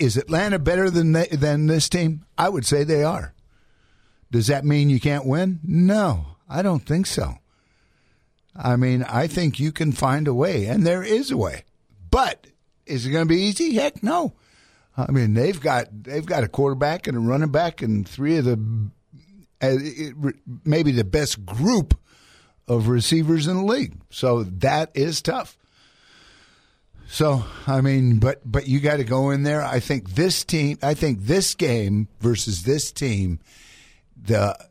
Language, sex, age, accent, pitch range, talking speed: English, male, 50-69, American, 105-150 Hz, 170 wpm